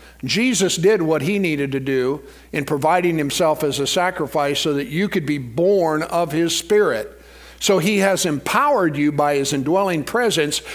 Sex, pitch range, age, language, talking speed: male, 155-195 Hz, 50-69, English, 175 wpm